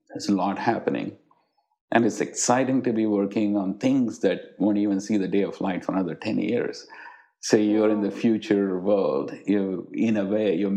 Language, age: English, 50-69